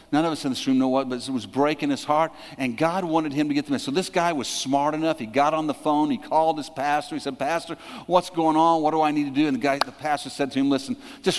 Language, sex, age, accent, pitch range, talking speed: English, male, 50-69, American, 160-230 Hz, 310 wpm